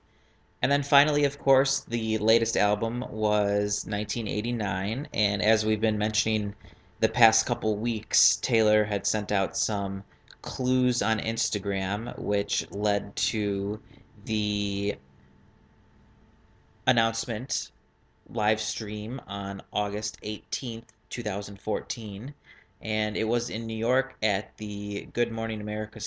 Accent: American